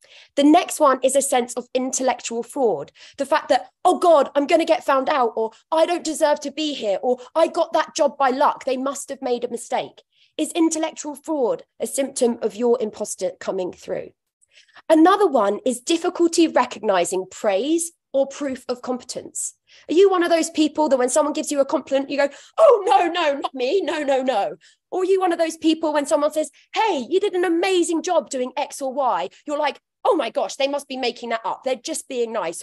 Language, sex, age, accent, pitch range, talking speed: English, female, 20-39, British, 235-315 Hz, 215 wpm